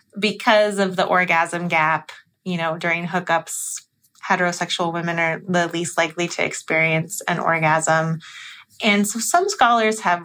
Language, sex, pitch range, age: English, female, 170-205 Hz, 30-49